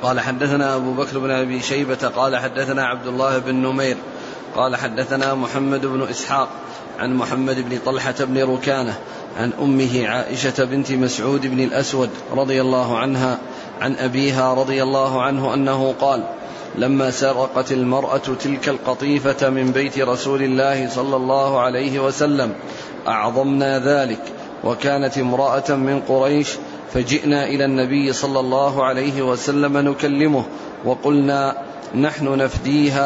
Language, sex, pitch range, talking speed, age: Arabic, male, 130-140 Hz, 130 wpm, 30-49